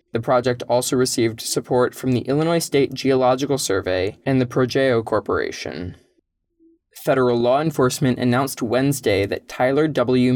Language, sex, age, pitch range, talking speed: English, male, 20-39, 115-140 Hz, 135 wpm